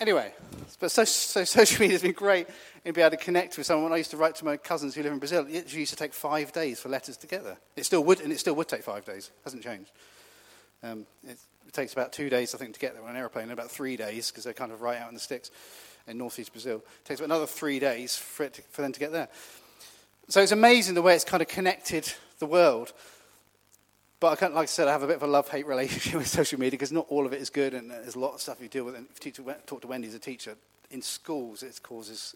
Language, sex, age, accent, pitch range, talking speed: English, male, 40-59, British, 120-165 Hz, 290 wpm